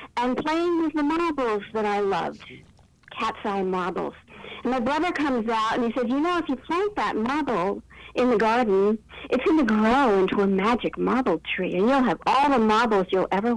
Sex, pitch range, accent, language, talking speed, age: female, 205-290 Hz, American, English, 200 wpm, 60-79